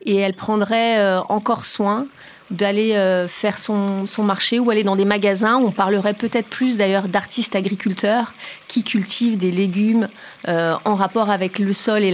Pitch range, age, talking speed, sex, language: 190-230 Hz, 30-49, 160 wpm, female, French